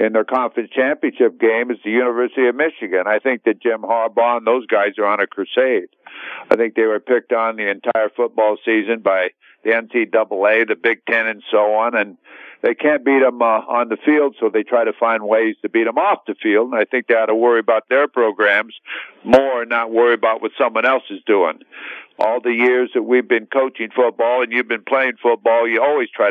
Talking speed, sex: 225 wpm, male